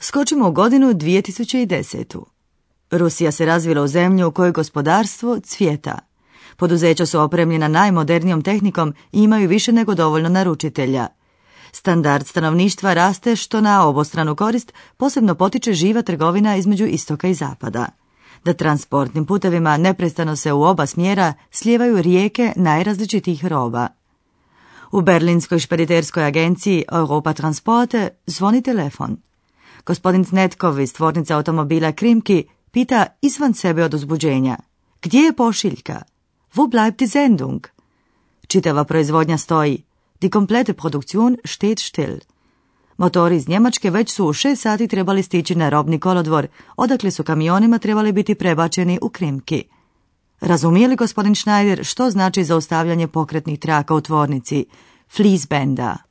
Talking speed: 125 wpm